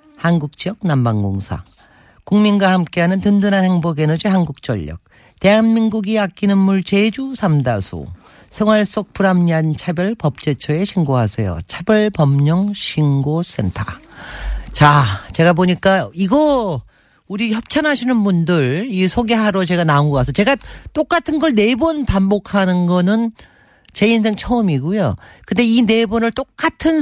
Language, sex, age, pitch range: Korean, male, 40-59, 145-210 Hz